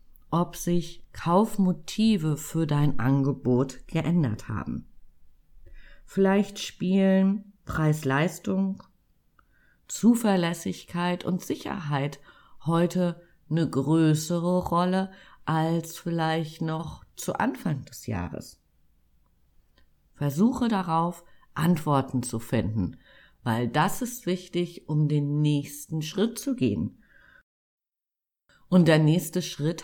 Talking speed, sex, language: 90 wpm, female, German